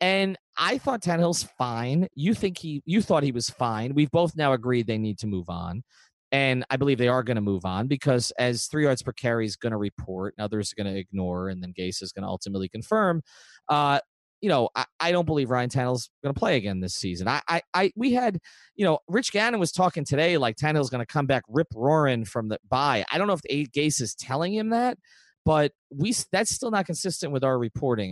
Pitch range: 110-155 Hz